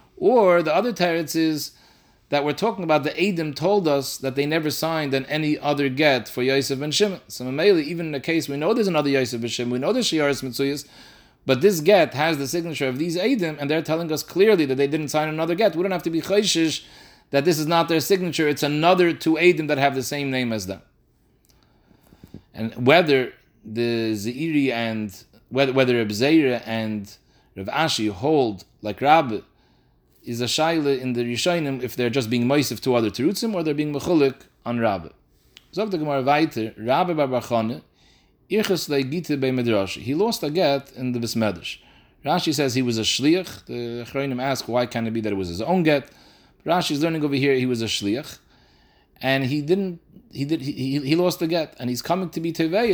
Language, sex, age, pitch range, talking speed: English, male, 30-49, 125-165 Hz, 195 wpm